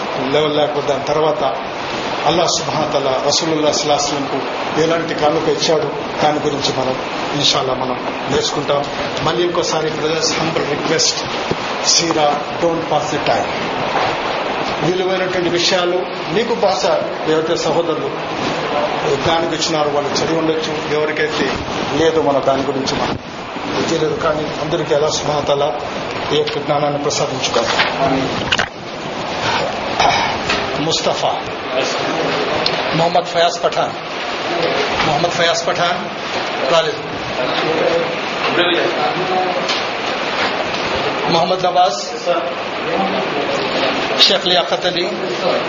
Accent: native